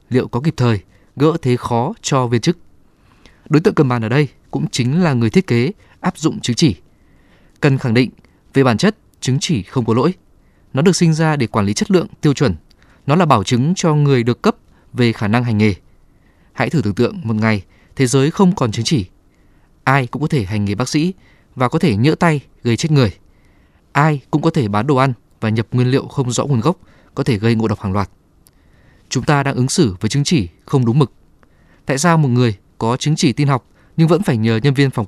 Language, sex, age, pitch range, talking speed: Vietnamese, male, 20-39, 110-155 Hz, 235 wpm